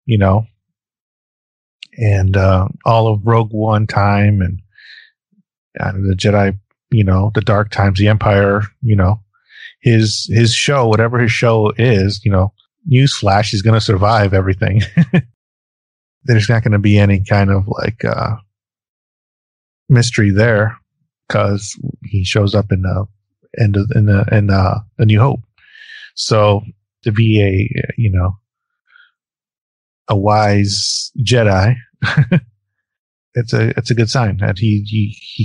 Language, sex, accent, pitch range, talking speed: English, male, American, 100-120 Hz, 140 wpm